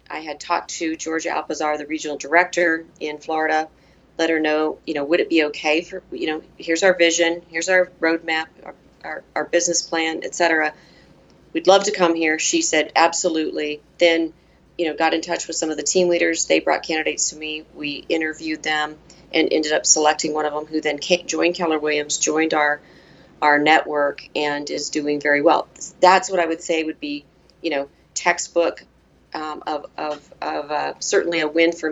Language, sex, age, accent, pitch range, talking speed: English, female, 40-59, American, 150-170 Hz, 195 wpm